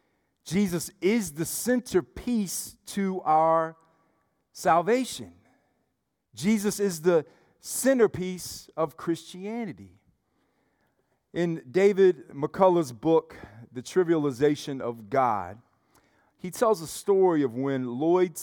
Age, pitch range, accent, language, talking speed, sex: 40-59, 130-170 Hz, American, English, 90 wpm, male